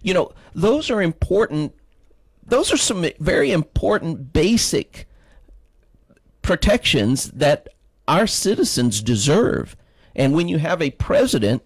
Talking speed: 115 wpm